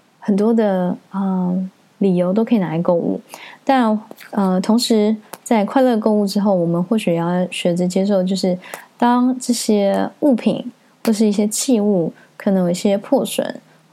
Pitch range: 185-225 Hz